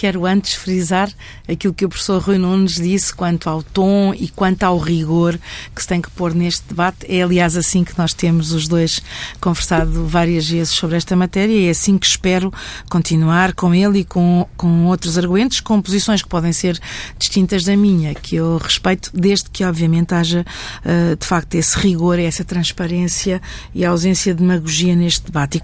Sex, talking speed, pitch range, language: female, 185 wpm, 170-195 Hz, Portuguese